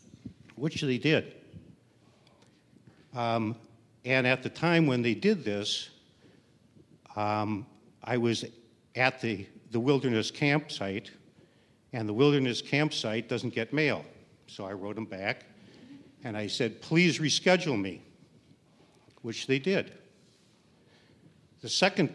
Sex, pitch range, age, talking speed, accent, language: male, 105-130 Hz, 60-79, 115 wpm, American, English